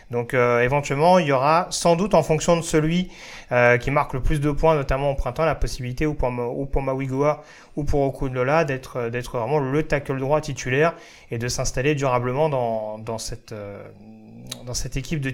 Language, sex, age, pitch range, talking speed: French, male, 30-49, 125-160 Hz, 200 wpm